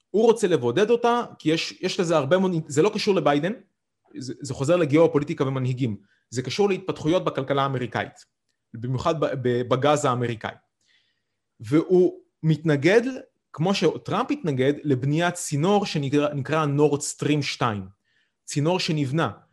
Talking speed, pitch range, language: 115 wpm, 130-180 Hz, Hebrew